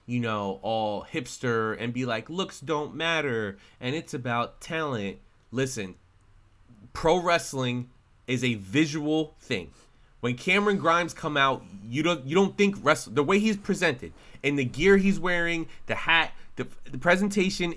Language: English